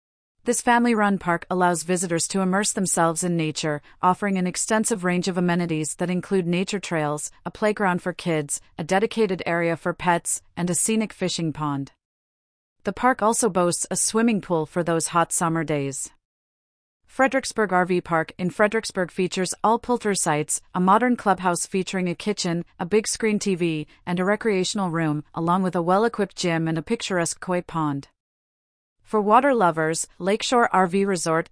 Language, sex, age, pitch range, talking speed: English, female, 30-49, 165-205 Hz, 160 wpm